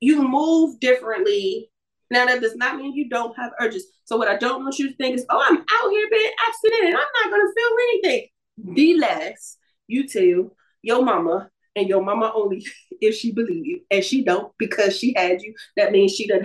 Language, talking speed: English, 210 wpm